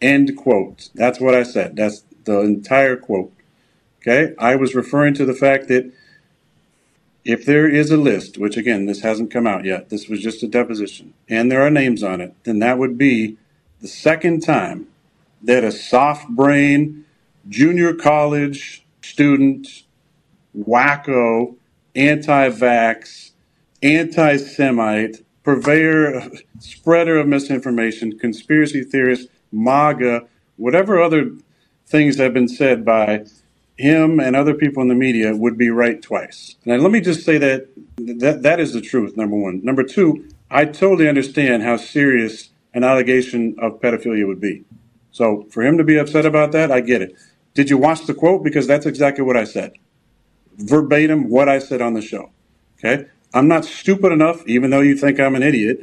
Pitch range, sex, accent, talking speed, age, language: 115-145 Hz, male, American, 160 wpm, 50-69, English